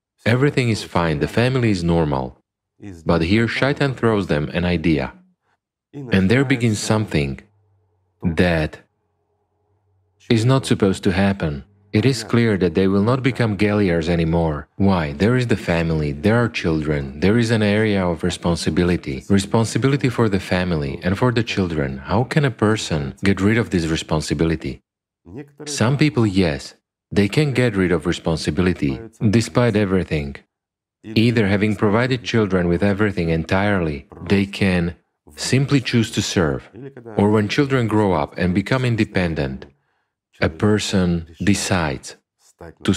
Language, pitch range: English, 85-115 Hz